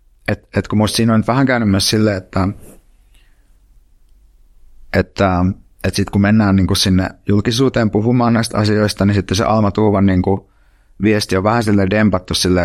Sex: male